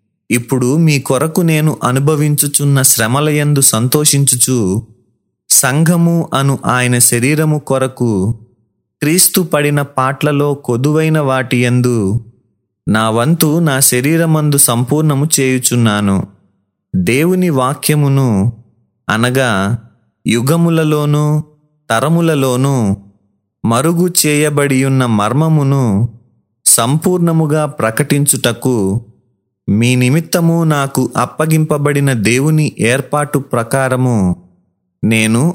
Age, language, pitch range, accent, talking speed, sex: 30-49, Telugu, 115-150 Hz, native, 70 wpm, male